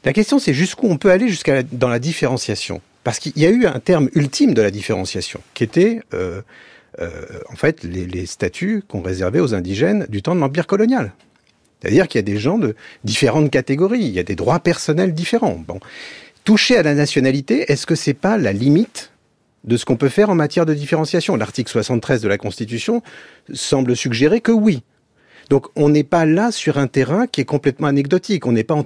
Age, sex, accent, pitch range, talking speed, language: 40-59, male, French, 110-170 Hz, 210 wpm, French